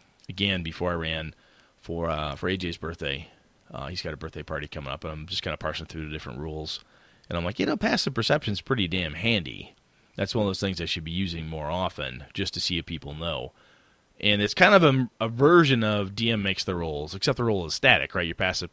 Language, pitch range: English, 85-115 Hz